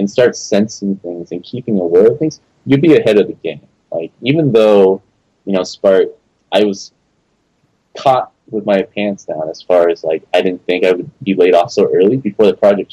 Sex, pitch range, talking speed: male, 95-125 Hz, 210 wpm